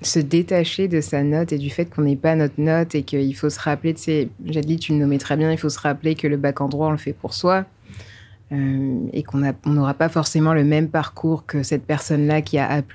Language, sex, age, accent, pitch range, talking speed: French, female, 20-39, French, 140-165 Hz, 255 wpm